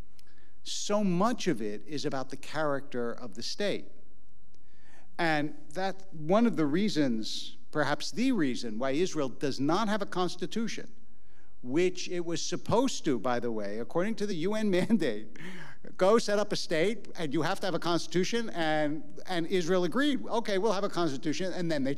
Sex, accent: male, American